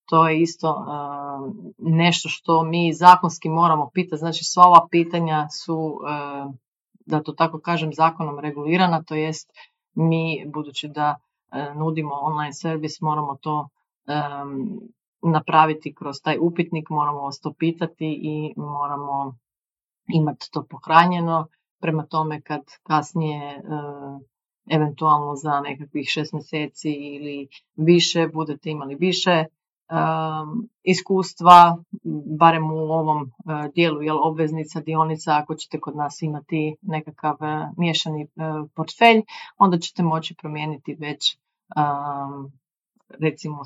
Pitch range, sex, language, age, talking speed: 150-165 Hz, female, Croatian, 30-49, 110 wpm